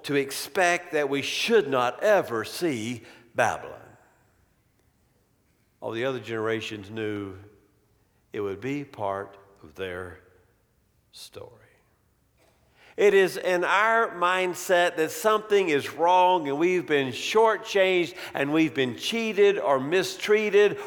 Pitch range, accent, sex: 135-180 Hz, American, male